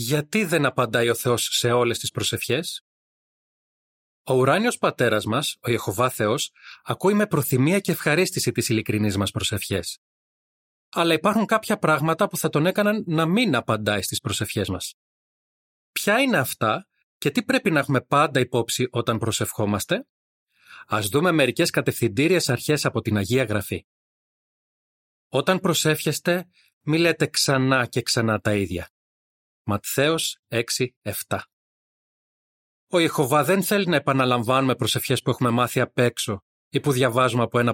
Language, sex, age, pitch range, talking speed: Greek, male, 30-49, 115-160 Hz, 135 wpm